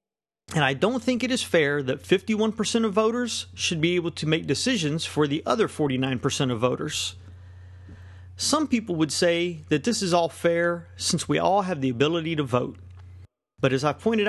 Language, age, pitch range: English, 40-59, 125-190 Hz